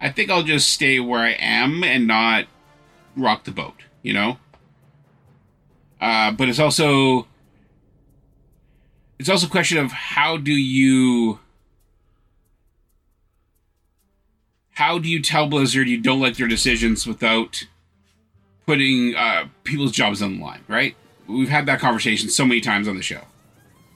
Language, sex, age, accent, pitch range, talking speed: English, male, 30-49, American, 110-135 Hz, 140 wpm